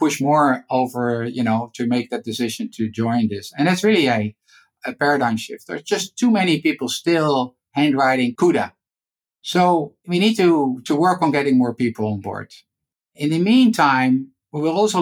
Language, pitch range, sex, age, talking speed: English, 120-170 Hz, male, 50-69, 180 wpm